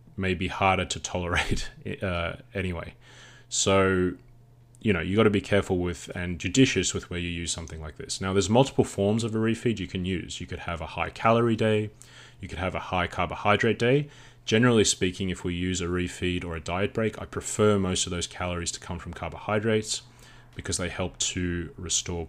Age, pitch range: 30-49, 90-110 Hz